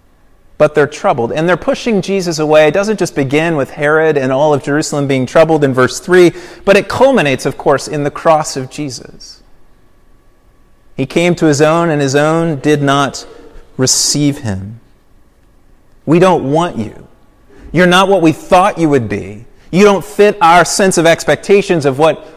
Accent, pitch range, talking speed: American, 145-195 Hz, 175 wpm